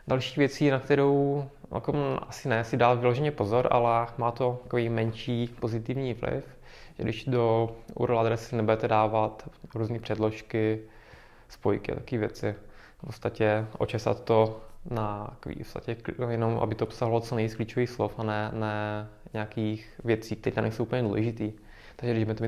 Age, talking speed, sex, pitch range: 20-39, 155 wpm, male, 110-120 Hz